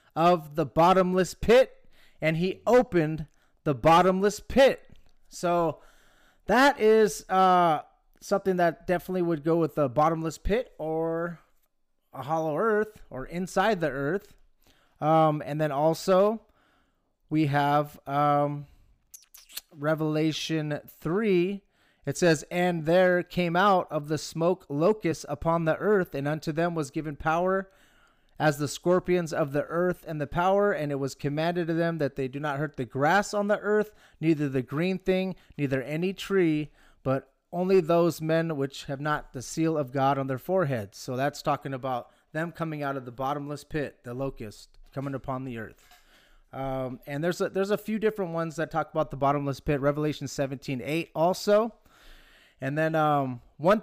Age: 30-49